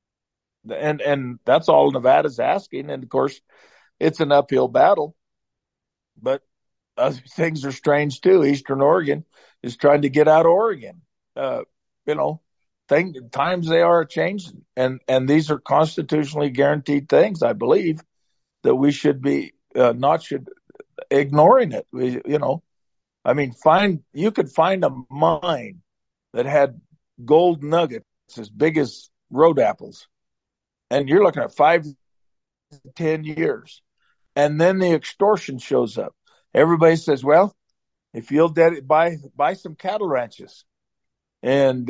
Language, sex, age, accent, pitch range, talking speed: English, male, 50-69, American, 140-170 Hz, 140 wpm